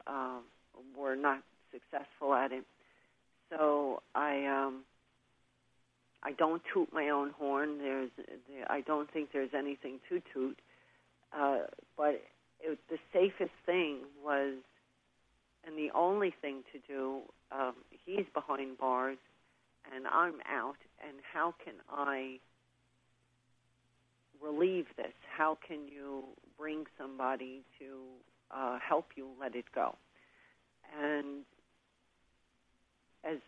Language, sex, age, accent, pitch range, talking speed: English, female, 50-69, American, 125-150 Hz, 115 wpm